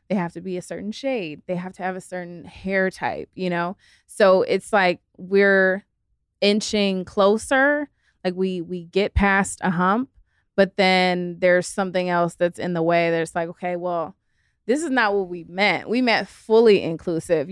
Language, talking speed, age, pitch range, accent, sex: English, 180 wpm, 20-39, 170-195 Hz, American, female